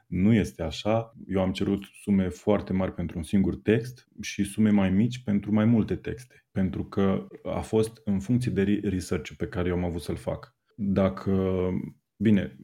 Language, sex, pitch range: Romanian, male, 95-110 Hz